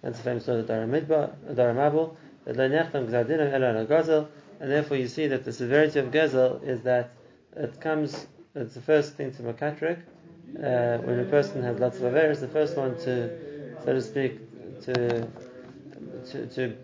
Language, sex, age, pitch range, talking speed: English, male, 30-49, 125-150 Hz, 155 wpm